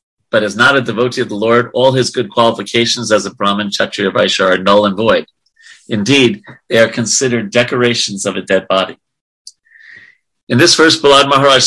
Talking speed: 180 wpm